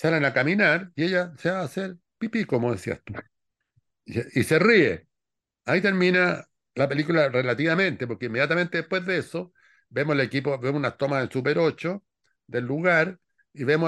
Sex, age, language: male, 60-79, Spanish